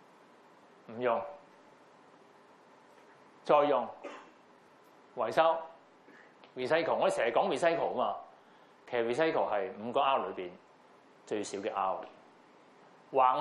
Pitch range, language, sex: 120-175 Hz, Chinese, male